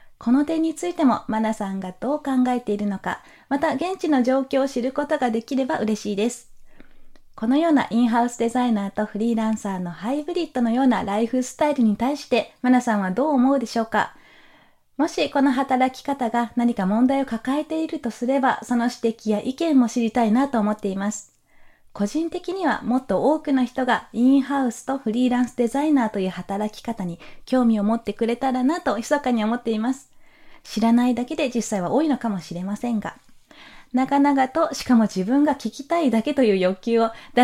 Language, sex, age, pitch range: Japanese, female, 20-39, 225-280 Hz